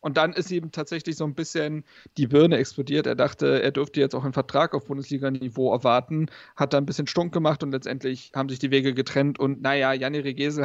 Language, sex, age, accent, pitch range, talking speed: German, male, 40-59, German, 140-175 Hz, 220 wpm